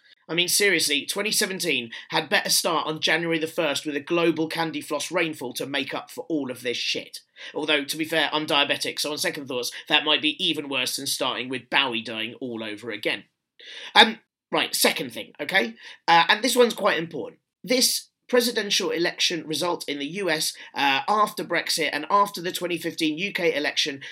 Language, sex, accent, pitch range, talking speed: English, male, British, 160-240 Hz, 185 wpm